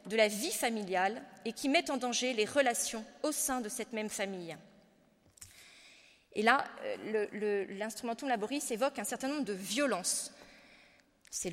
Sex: female